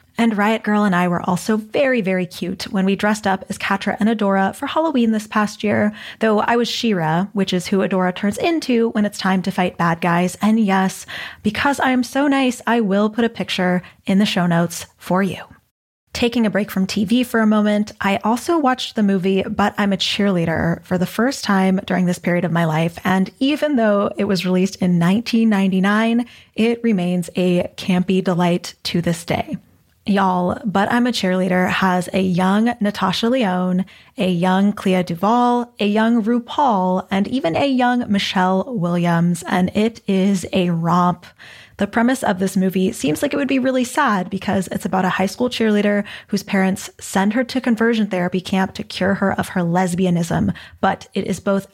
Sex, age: female, 20-39